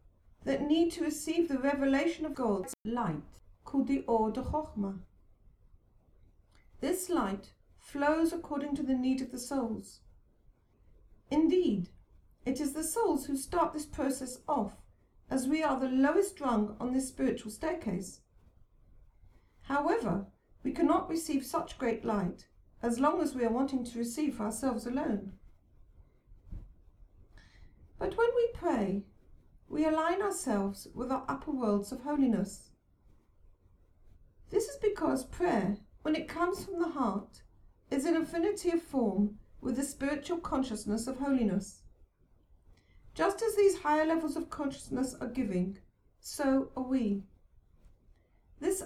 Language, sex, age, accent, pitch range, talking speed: English, female, 50-69, British, 205-315 Hz, 135 wpm